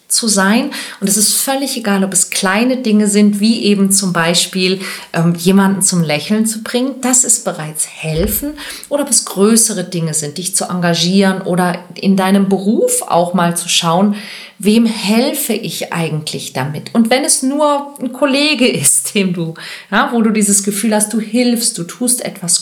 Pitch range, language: 180-225 Hz, German